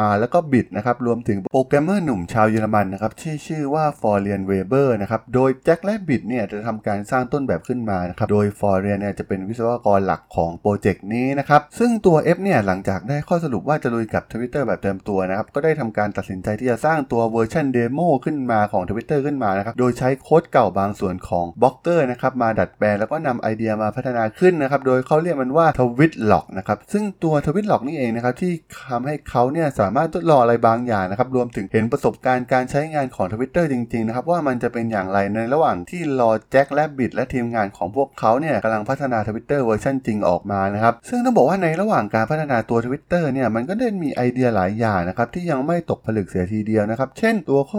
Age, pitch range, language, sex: 20-39, 110-145 Hz, Thai, male